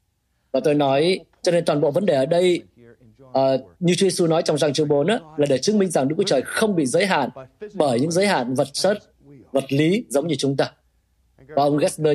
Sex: male